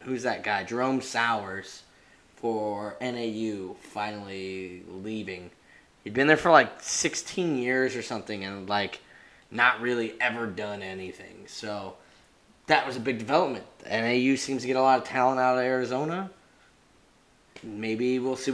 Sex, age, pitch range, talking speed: male, 20-39, 110-145 Hz, 145 wpm